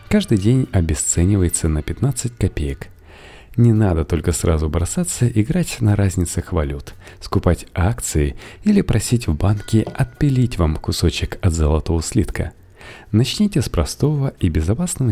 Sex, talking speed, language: male, 125 wpm, Russian